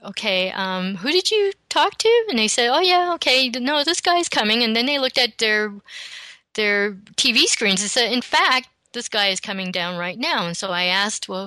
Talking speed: 225 wpm